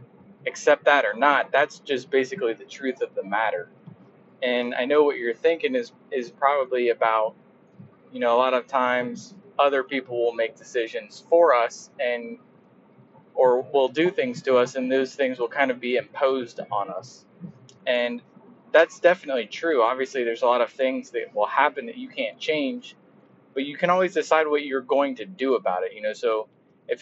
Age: 20-39